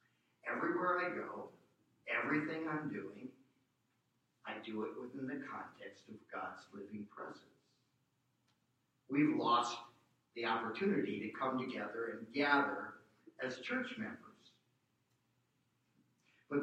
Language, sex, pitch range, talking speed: English, male, 120-160 Hz, 105 wpm